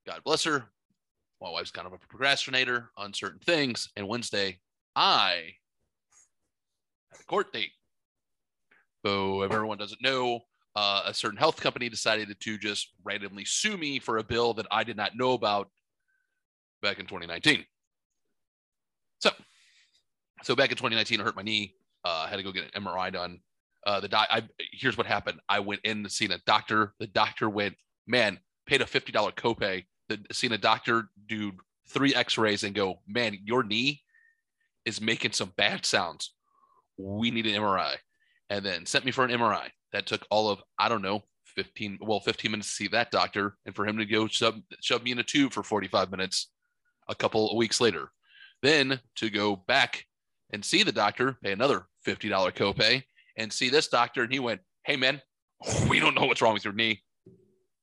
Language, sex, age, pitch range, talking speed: English, male, 30-49, 105-130 Hz, 185 wpm